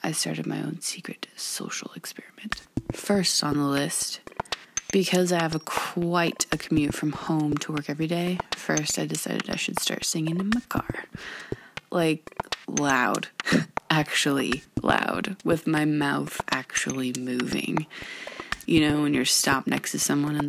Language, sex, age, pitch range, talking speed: English, female, 20-39, 145-185 Hz, 150 wpm